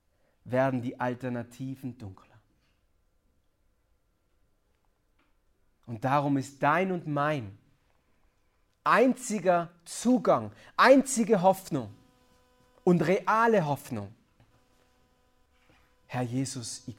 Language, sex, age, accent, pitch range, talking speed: German, male, 40-59, German, 90-145 Hz, 70 wpm